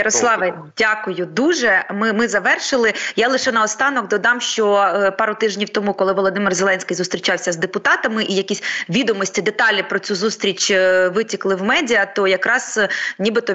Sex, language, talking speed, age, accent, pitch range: female, Ukrainian, 145 wpm, 20-39, native, 185-225 Hz